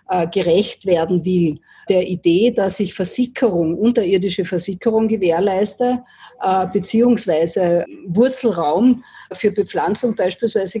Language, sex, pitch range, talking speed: German, female, 185-220 Hz, 90 wpm